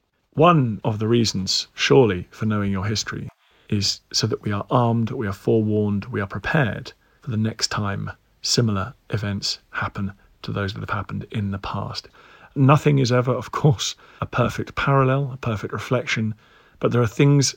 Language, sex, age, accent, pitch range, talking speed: English, male, 40-59, British, 105-130 Hz, 175 wpm